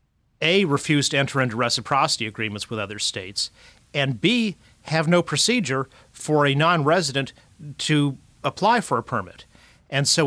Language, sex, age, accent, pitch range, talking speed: English, male, 40-59, American, 115-145 Hz, 145 wpm